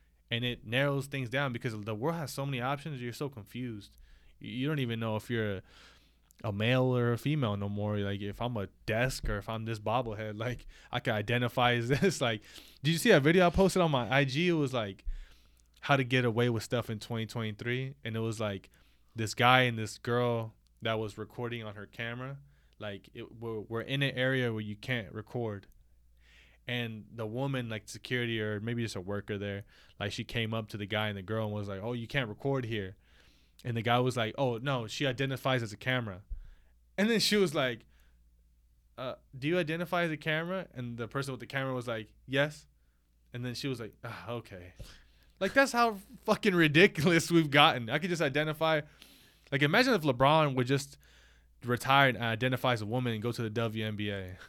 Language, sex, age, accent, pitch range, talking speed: English, male, 20-39, American, 105-135 Hz, 205 wpm